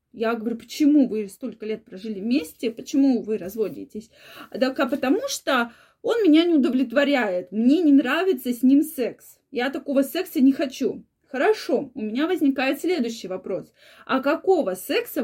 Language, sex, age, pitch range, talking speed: Russian, female, 20-39, 240-320 Hz, 150 wpm